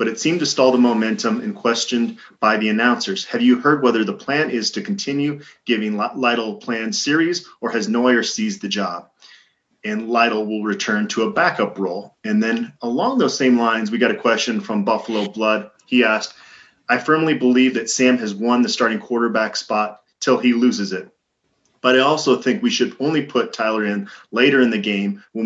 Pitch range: 110-135 Hz